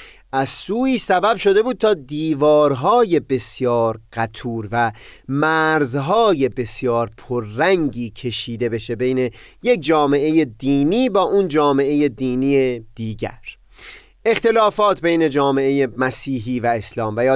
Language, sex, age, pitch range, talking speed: Persian, male, 30-49, 120-160 Hz, 105 wpm